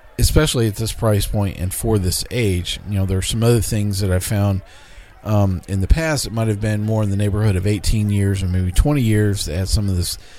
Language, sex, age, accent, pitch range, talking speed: English, male, 40-59, American, 90-105 Hz, 250 wpm